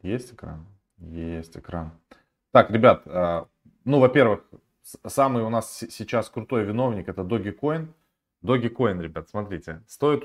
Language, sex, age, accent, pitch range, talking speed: Russian, male, 20-39, native, 100-135 Hz, 135 wpm